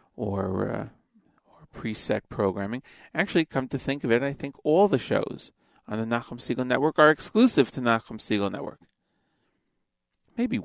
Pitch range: 110-145 Hz